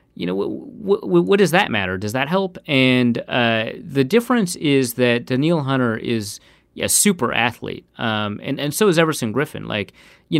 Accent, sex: American, male